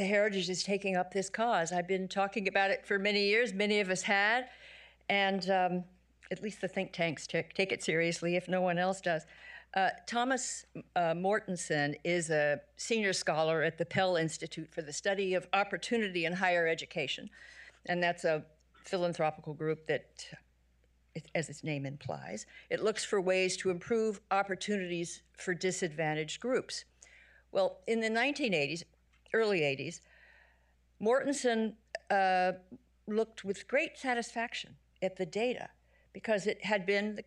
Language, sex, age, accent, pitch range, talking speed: English, female, 50-69, American, 170-210 Hz, 150 wpm